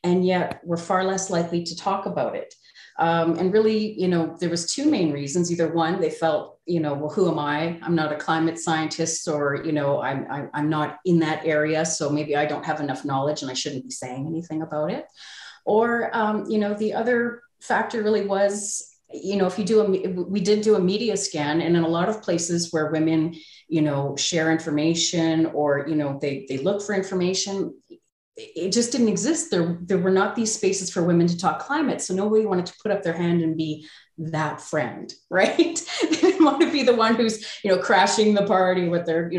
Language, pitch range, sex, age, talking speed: English, 160-210 Hz, female, 30-49, 220 wpm